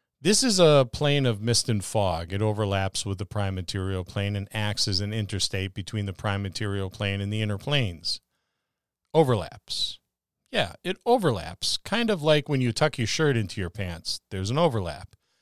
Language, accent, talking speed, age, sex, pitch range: English, American, 185 wpm, 40-59, male, 105-140 Hz